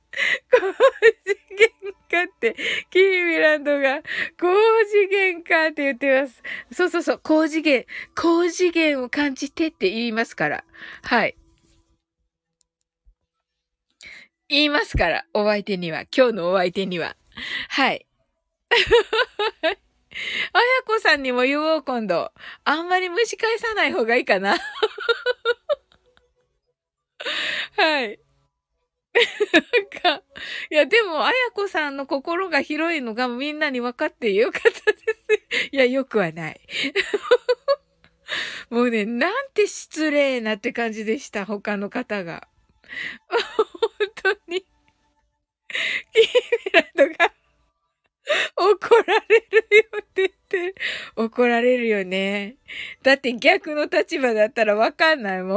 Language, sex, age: Japanese, female, 20-39